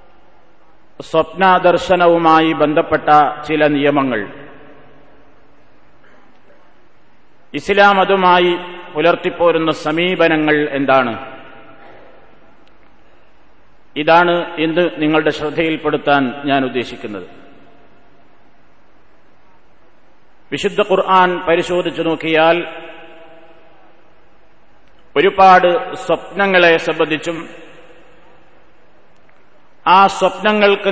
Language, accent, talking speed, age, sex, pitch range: Malayalam, native, 45 wpm, 50-69, male, 155-185 Hz